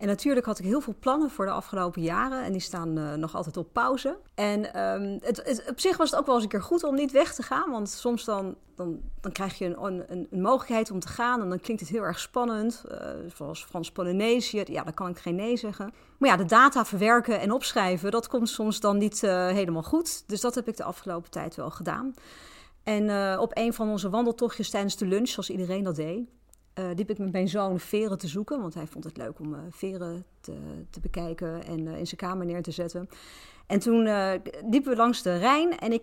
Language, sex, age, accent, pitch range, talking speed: Dutch, female, 40-59, Dutch, 180-240 Hz, 235 wpm